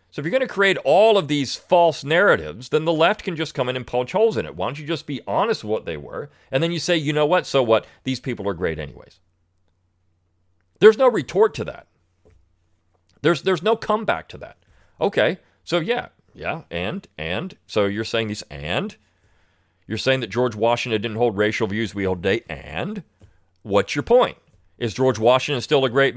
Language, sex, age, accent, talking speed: English, male, 40-59, American, 210 wpm